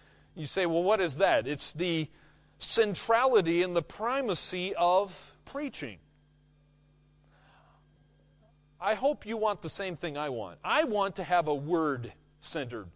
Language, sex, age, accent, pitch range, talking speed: English, male, 40-59, American, 145-200 Hz, 135 wpm